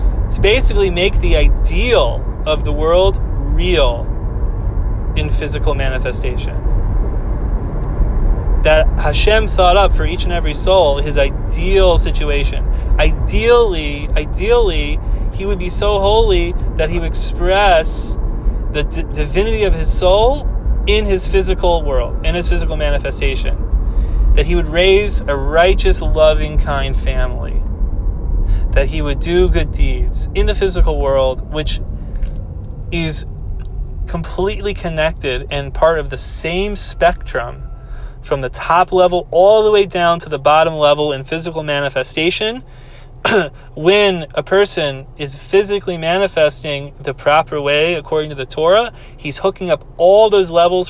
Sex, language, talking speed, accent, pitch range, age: male, English, 130 wpm, American, 125-180 Hz, 30-49